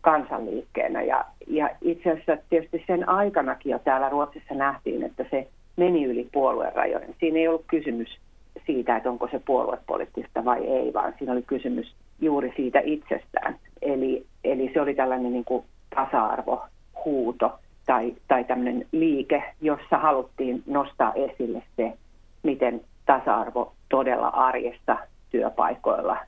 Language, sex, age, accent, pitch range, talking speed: Finnish, female, 40-59, native, 130-160 Hz, 130 wpm